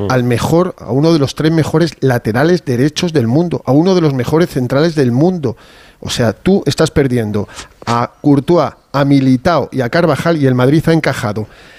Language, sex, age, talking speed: Spanish, male, 40-59, 190 wpm